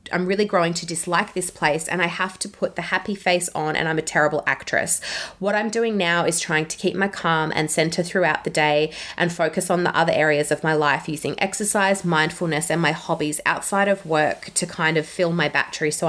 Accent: Australian